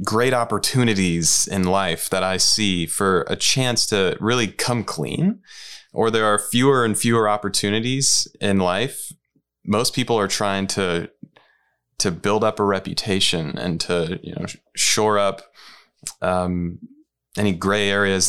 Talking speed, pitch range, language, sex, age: 140 wpm, 95-120 Hz, English, male, 20-39